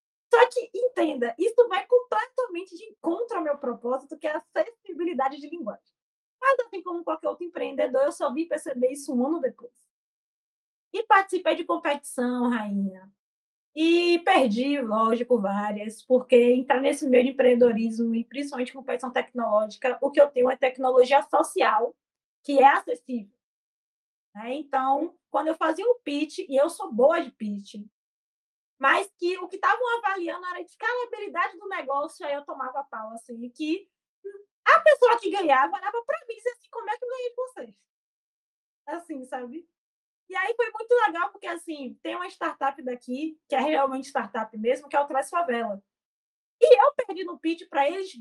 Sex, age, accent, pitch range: female, 20-39, Brazilian, 255-375 Hz